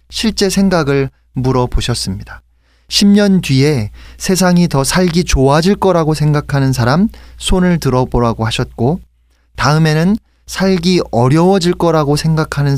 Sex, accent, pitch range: male, native, 110-165 Hz